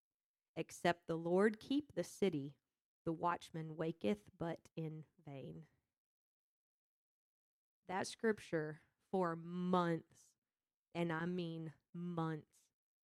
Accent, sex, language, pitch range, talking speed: American, female, English, 160-185 Hz, 90 wpm